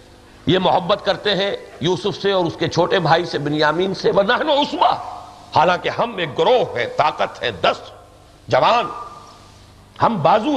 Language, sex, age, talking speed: Urdu, male, 60-79, 155 wpm